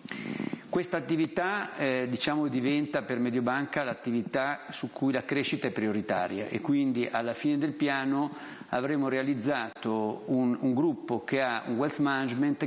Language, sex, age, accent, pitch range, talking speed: Italian, male, 50-69, native, 120-155 Hz, 140 wpm